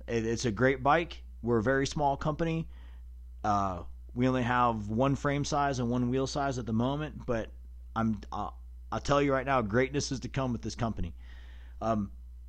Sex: male